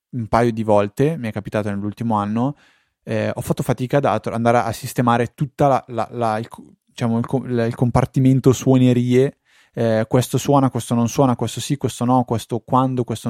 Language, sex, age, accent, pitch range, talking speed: Italian, male, 20-39, native, 110-135 Hz, 165 wpm